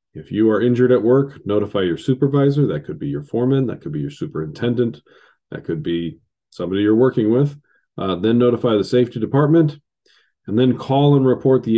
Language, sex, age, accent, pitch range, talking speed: English, male, 40-59, American, 95-130 Hz, 195 wpm